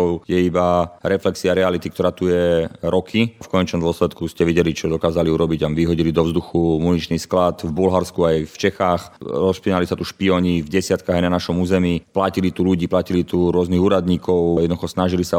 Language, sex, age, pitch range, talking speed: Slovak, male, 30-49, 85-95 Hz, 180 wpm